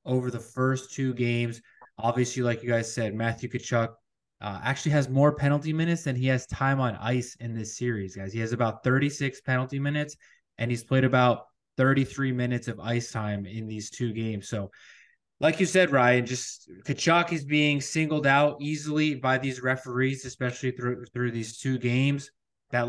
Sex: male